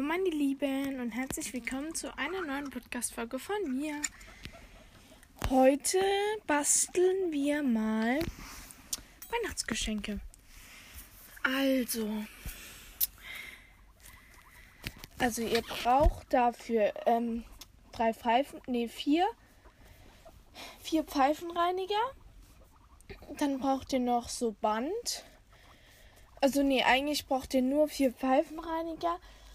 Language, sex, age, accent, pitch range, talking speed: German, female, 10-29, German, 245-315 Hz, 85 wpm